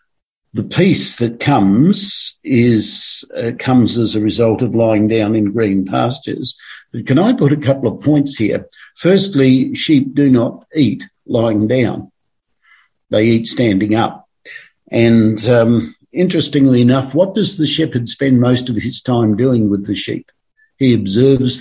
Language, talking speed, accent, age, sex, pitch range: English, 155 wpm, Australian, 50-69, male, 110-130 Hz